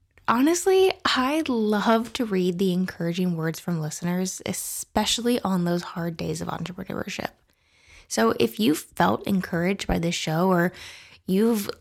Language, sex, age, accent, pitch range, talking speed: English, female, 20-39, American, 185-250 Hz, 135 wpm